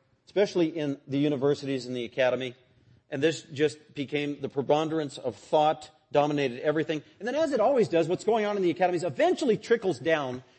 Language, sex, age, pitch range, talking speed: English, male, 40-59, 130-170 Hz, 180 wpm